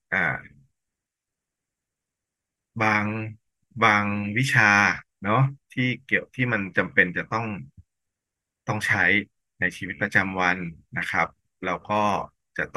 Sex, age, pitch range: male, 20-39, 95-115 Hz